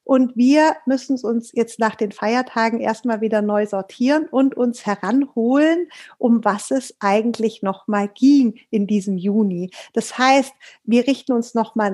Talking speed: 150 wpm